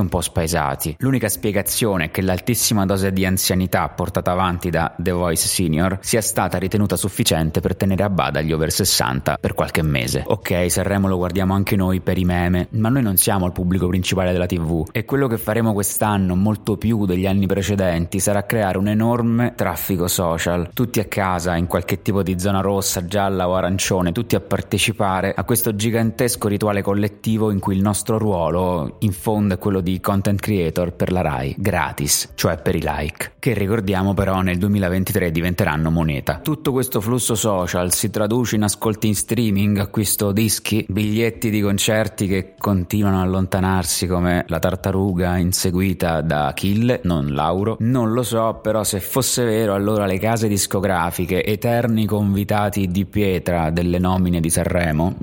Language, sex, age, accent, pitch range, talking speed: Italian, male, 20-39, native, 90-105 Hz, 170 wpm